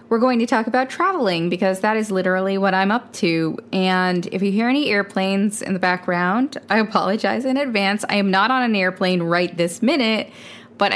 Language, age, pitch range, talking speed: English, 20-39, 180-220 Hz, 205 wpm